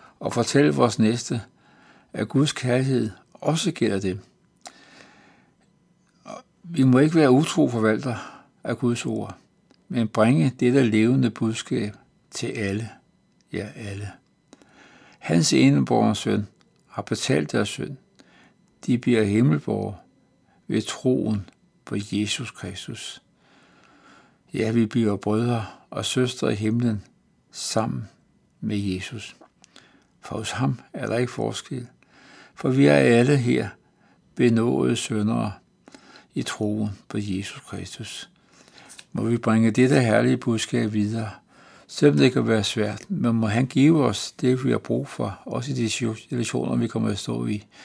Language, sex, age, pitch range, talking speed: Danish, male, 60-79, 100-125 Hz, 130 wpm